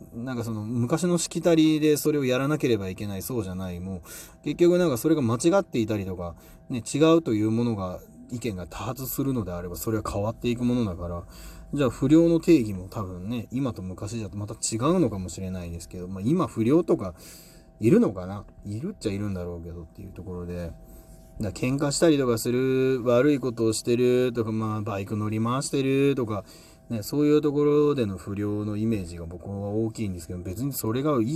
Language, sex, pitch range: Japanese, male, 95-130 Hz